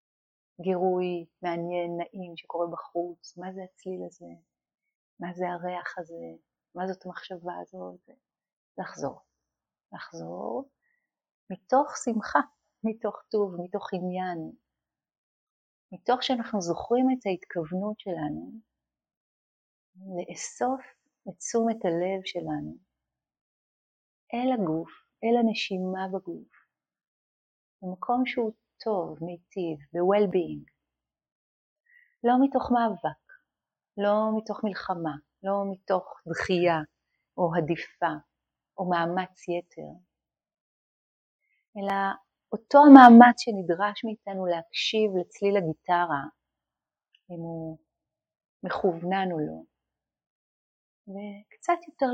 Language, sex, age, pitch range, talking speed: Hebrew, female, 30-49, 170-225 Hz, 85 wpm